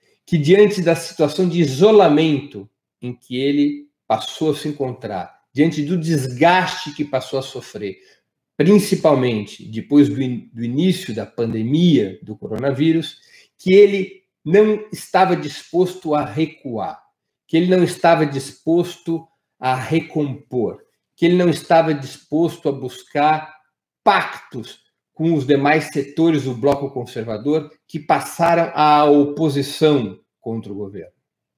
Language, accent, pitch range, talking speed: Portuguese, Brazilian, 125-165 Hz, 125 wpm